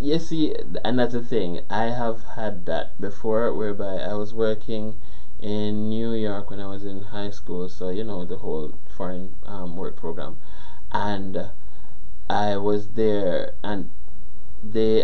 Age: 20-39